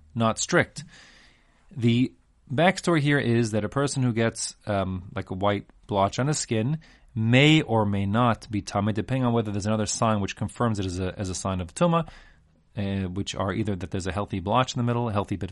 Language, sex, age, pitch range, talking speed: English, male, 30-49, 100-130 Hz, 215 wpm